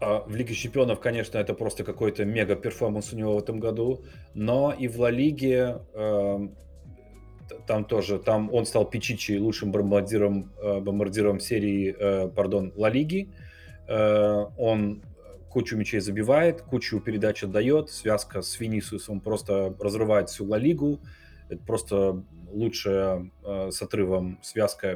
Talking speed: 135 wpm